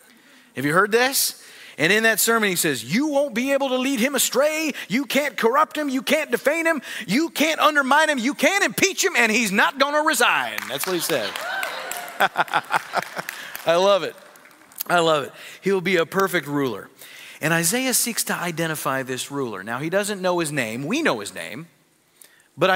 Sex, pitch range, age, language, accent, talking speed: male, 150-245 Hz, 30-49, English, American, 190 wpm